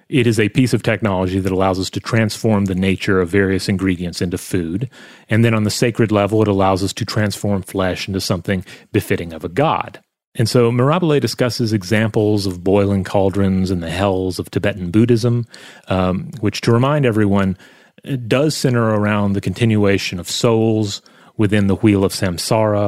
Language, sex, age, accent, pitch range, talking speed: English, male, 30-49, American, 95-115 Hz, 180 wpm